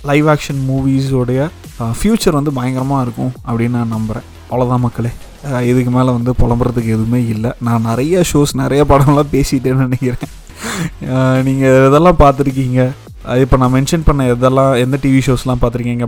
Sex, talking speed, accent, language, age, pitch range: male, 140 wpm, native, Tamil, 30-49, 120-140 Hz